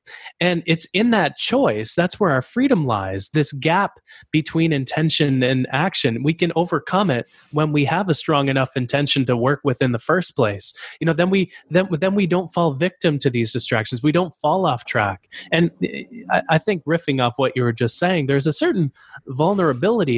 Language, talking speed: English, 195 wpm